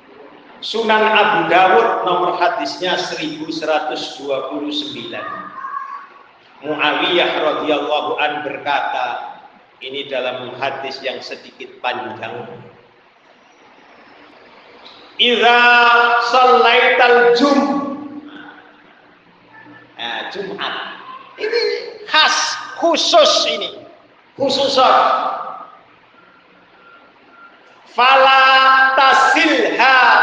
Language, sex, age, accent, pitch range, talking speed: Indonesian, male, 50-69, native, 235-310 Hz, 50 wpm